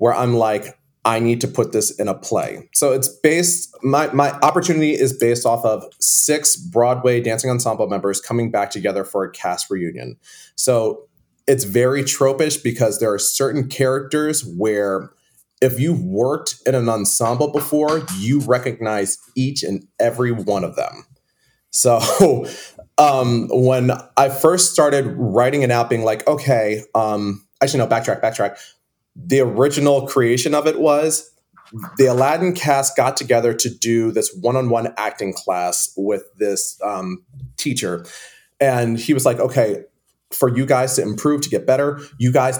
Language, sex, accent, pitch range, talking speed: English, male, American, 115-145 Hz, 155 wpm